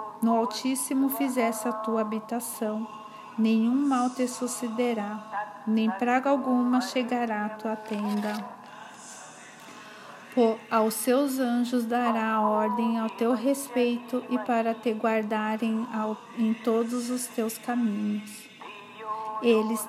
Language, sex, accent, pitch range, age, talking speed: Portuguese, female, Brazilian, 215-250 Hz, 50-69, 105 wpm